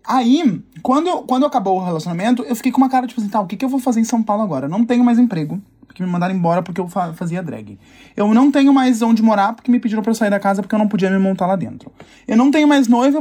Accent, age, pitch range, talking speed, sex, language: Brazilian, 20-39, 205-265 Hz, 285 wpm, male, Portuguese